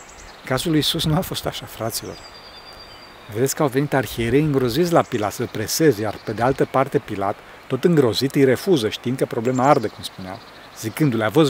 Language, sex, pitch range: Romanian, male, 120-155 Hz